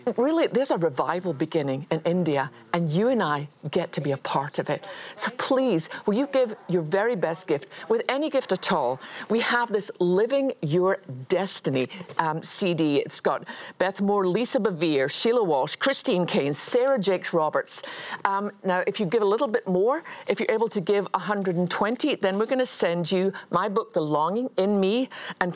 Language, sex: English, female